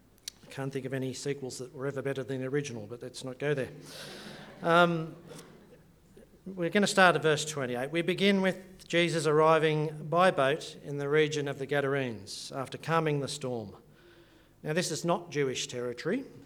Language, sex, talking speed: English, male, 180 wpm